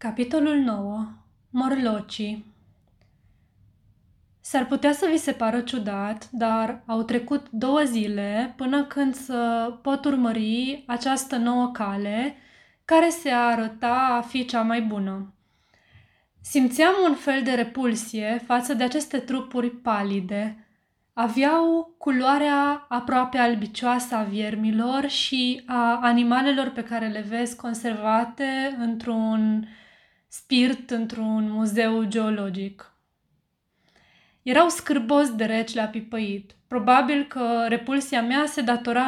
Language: Romanian